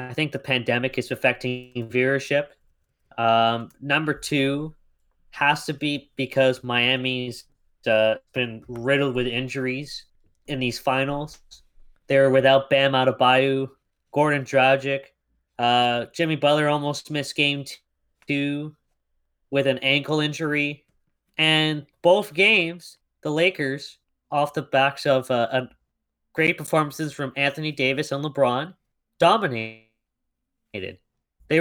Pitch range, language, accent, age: 130-155 Hz, English, American, 20-39